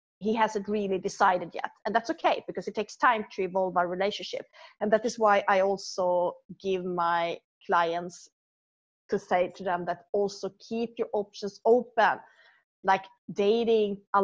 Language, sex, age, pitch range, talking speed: English, female, 30-49, 185-220 Hz, 160 wpm